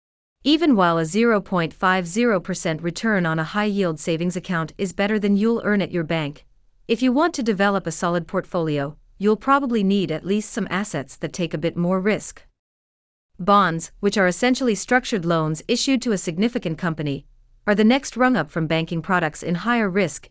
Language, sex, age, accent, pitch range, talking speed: English, female, 40-59, American, 160-220 Hz, 185 wpm